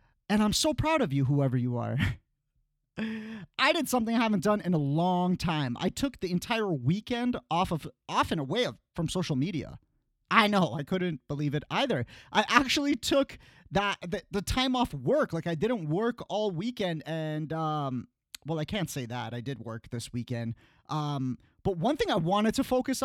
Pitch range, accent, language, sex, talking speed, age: 150-220 Hz, American, English, male, 195 wpm, 30-49